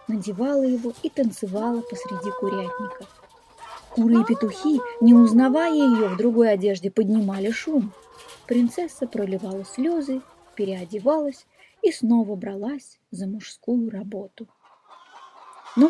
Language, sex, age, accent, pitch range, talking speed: Russian, female, 20-39, native, 215-280 Hz, 105 wpm